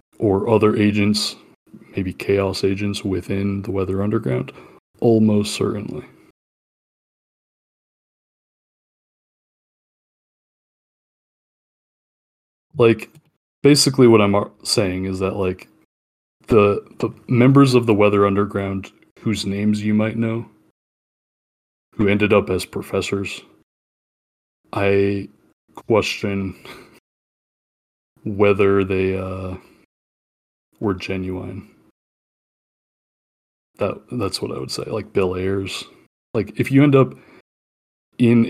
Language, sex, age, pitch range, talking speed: English, male, 20-39, 95-105 Hz, 90 wpm